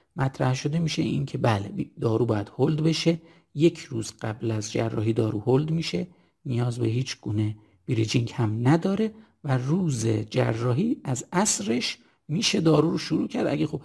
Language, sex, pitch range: Persian, male, 115-155 Hz